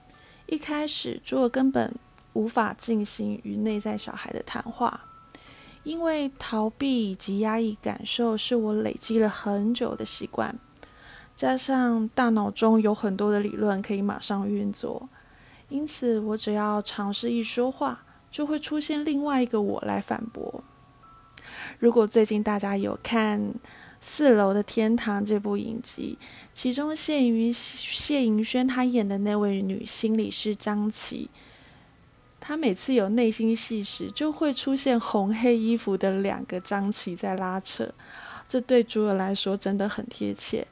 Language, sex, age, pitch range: Chinese, female, 20-39, 200-245 Hz